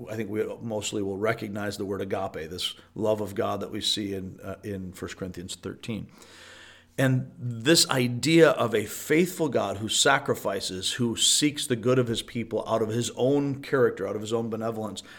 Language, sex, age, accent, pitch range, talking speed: English, male, 40-59, American, 105-130 Hz, 190 wpm